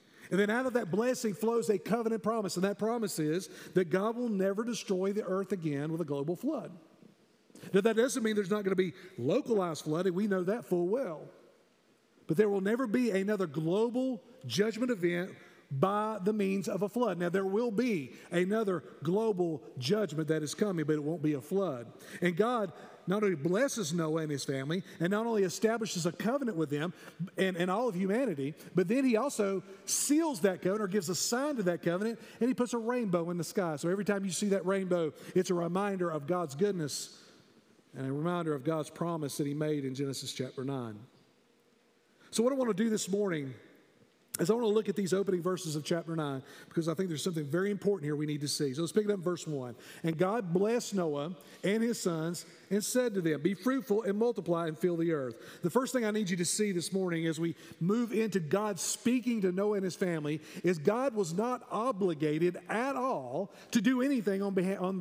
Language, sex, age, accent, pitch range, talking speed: English, male, 50-69, American, 170-215 Hz, 215 wpm